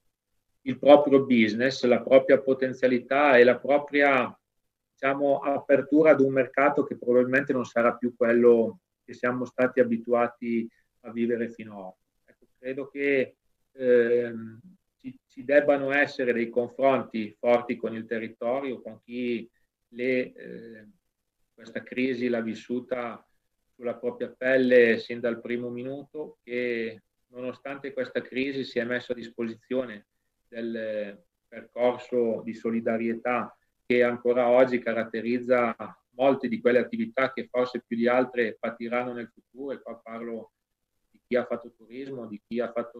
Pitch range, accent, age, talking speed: 115-125 Hz, native, 40-59, 140 wpm